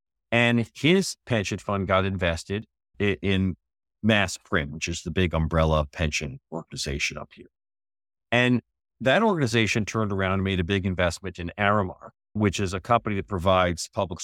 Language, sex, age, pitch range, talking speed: English, male, 50-69, 85-115 Hz, 155 wpm